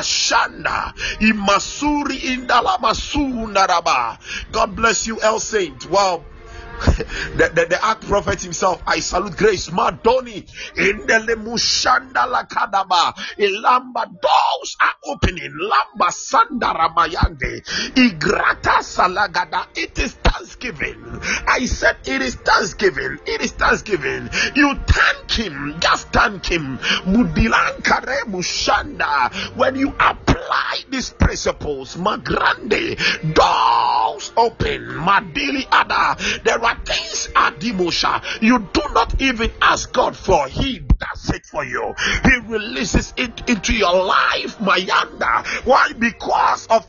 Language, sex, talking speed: English, male, 120 wpm